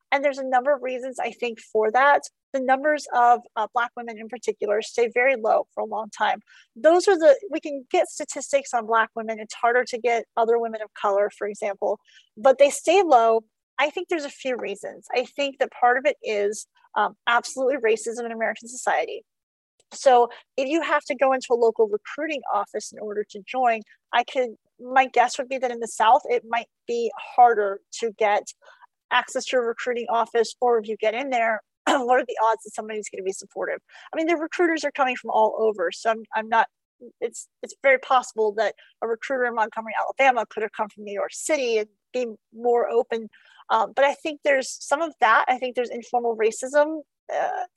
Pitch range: 225-285 Hz